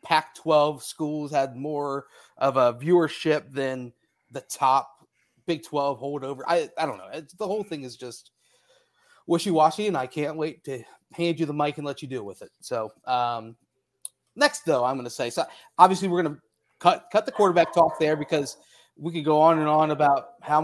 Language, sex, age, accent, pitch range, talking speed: English, male, 30-49, American, 130-160 Hz, 195 wpm